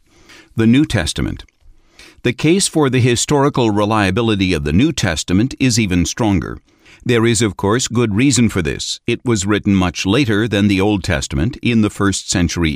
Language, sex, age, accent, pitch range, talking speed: English, male, 60-79, American, 90-115 Hz, 175 wpm